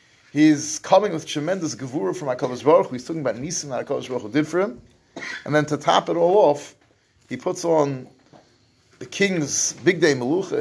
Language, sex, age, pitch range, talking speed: English, male, 30-49, 125-155 Hz, 180 wpm